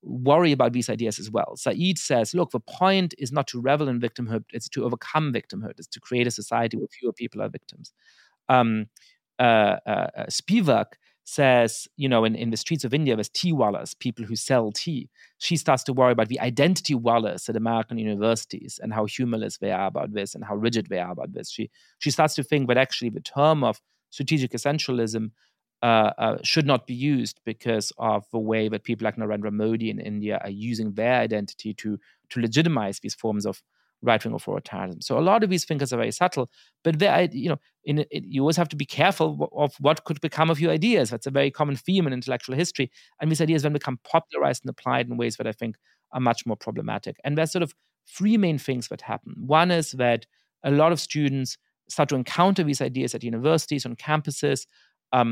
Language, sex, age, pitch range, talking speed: English, male, 30-49, 115-150 Hz, 205 wpm